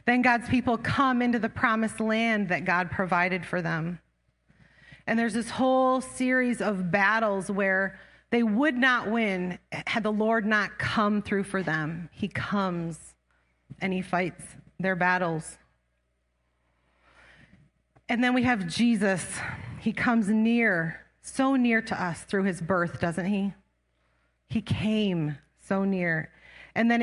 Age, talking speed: 30-49, 140 wpm